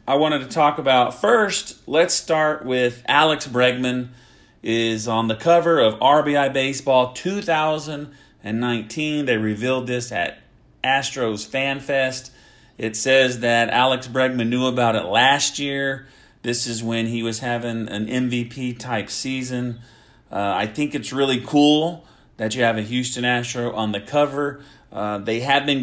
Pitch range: 115-145 Hz